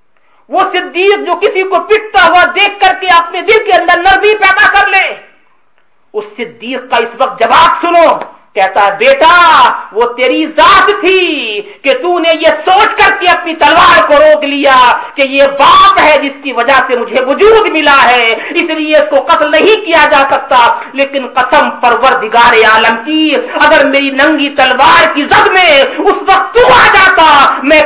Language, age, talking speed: English, 50-69, 175 wpm